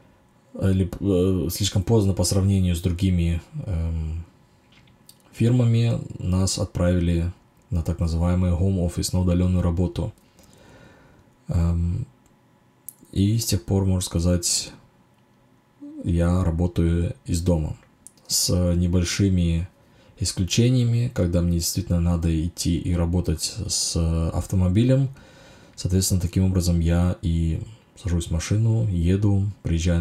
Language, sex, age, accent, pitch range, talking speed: Russian, male, 20-39, native, 85-100 Hz, 100 wpm